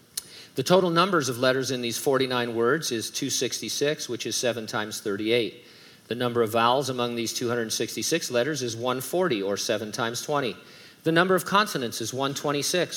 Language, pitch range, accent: English, 120-145 Hz, American